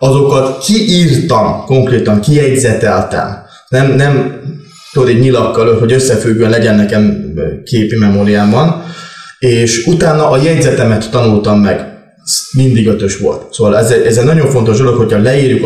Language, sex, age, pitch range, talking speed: Hungarian, male, 20-39, 110-145 Hz, 120 wpm